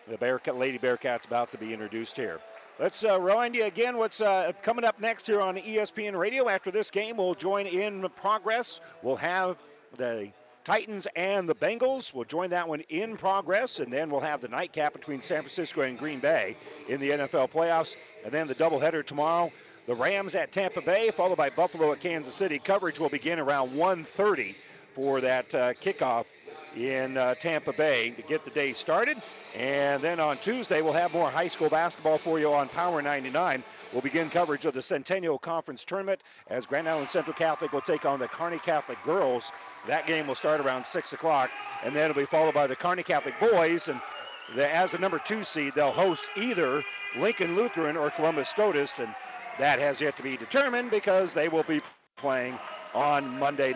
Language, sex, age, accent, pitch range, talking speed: English, male, 50-69, American, 140-190 Hz, 195 wpm